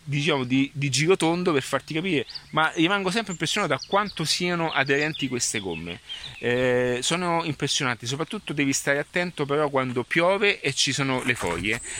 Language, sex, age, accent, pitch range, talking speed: Italian, male, 30-49, native, 120-150 Hz, 160 wpm